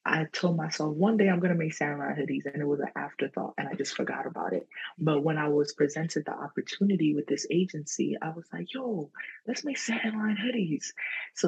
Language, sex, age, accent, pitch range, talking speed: English, female, 20-39, American, 150-180 Hz, 220 wpm